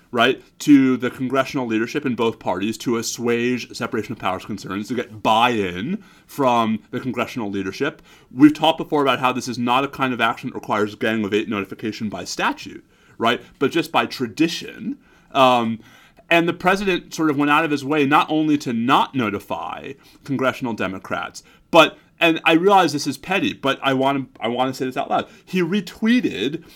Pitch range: 120-165 Hz